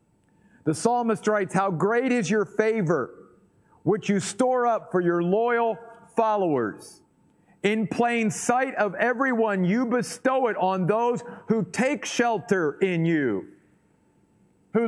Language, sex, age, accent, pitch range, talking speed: English, male, 50-69, American, 175-225 Hz, 130 wpm